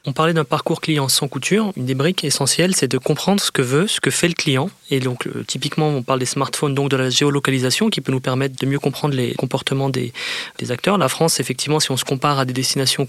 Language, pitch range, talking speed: French, 135-160 Hz, 250 wpm